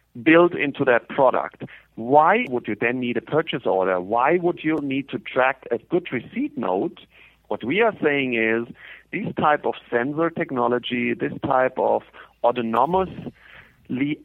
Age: 50-69